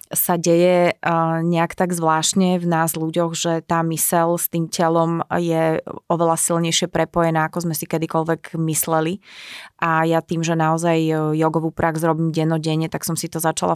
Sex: female